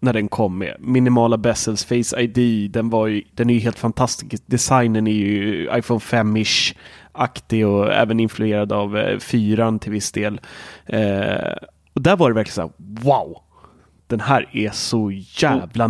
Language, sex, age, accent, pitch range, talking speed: Swedish, male, 30-49, native, 110-155 Hz, 170 wpm